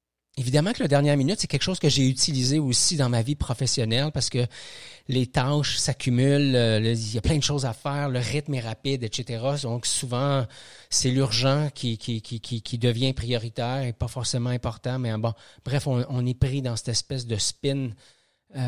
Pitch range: 125-185 Hz